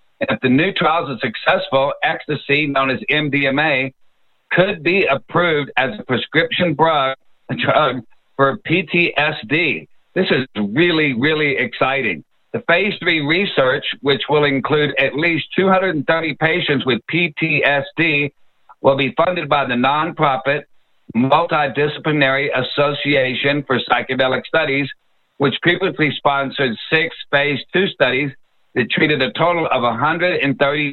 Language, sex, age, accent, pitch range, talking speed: English, male, 60-79, American, 135-155 Hz, 120 wpm